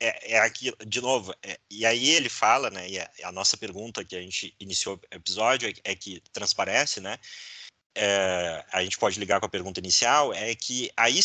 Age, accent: 30-49, Brazilian